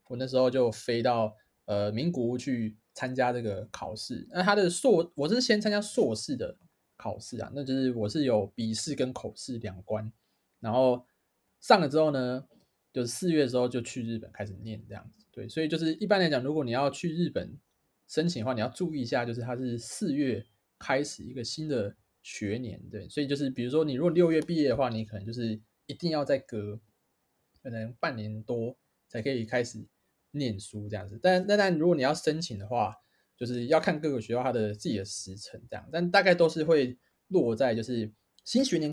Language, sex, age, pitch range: Chinese, male, 20-39, 110-155 Hz